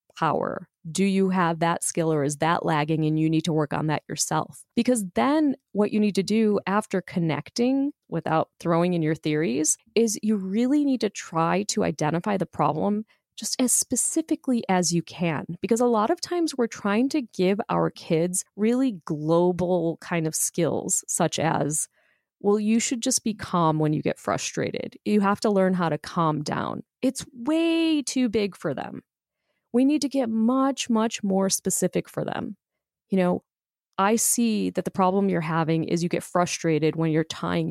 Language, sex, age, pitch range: English, female, 30-49, 165-225 Hz